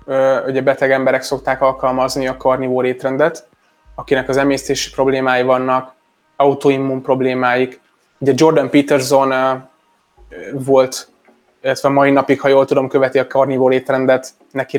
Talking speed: 120 wpm